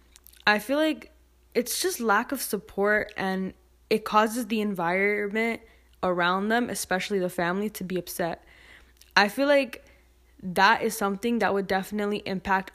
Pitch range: 180-220 Hz